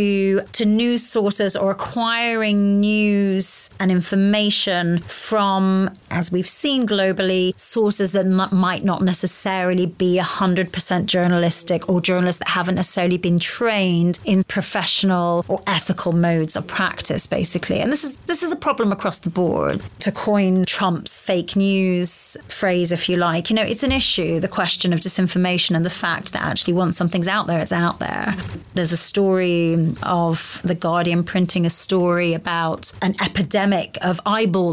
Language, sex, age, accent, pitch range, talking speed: English, female, 30-49, British, 175-210 Hz, 160 wpm